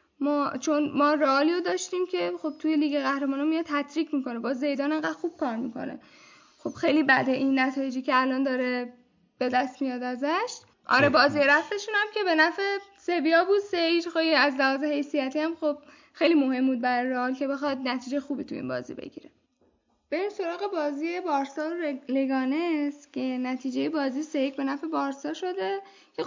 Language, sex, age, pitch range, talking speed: Persian, female, 10-29, 270-335 Hz, 170 wpm